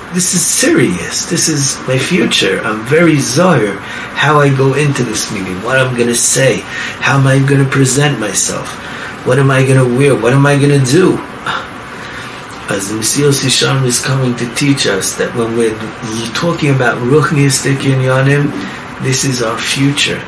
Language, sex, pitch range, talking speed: English, male, 115-140 Hz, 155 wpm